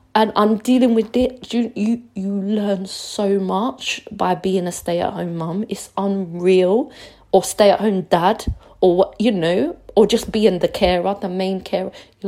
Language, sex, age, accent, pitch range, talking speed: English, female, 30-49, British, 170-220 Hz, 160 wpm